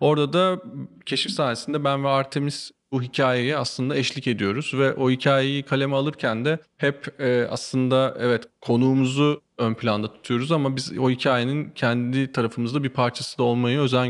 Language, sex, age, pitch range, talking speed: Turkish, male, 30-49, 120-145 Hz, 155 wpm